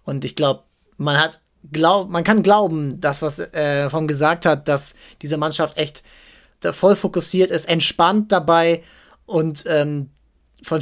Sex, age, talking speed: male, 20-39, 155 wpm